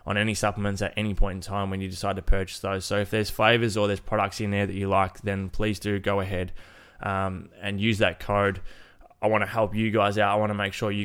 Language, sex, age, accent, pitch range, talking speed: English, male, 20-39, Australian, 95-105 Hz, 265 wpm